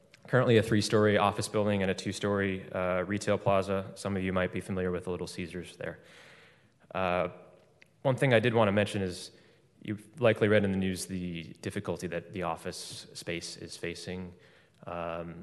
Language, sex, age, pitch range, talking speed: English, male, 20-39, 90-105 Hz, 175 wpm